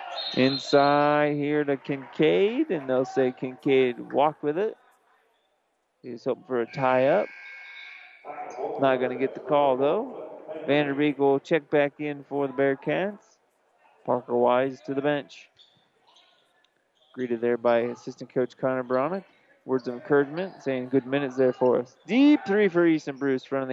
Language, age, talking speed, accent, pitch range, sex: English, 30-49, 145 wpm, American, 130-150 Hz, male